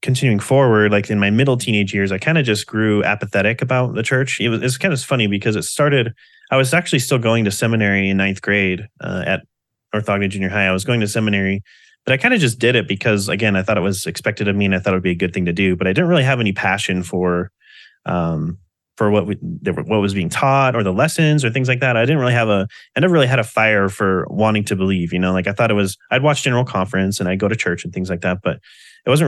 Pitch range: 95-125 Hz